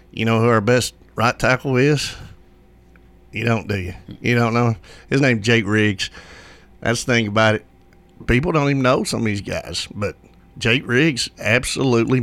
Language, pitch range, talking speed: English, 95-120 Hz, 175 wpm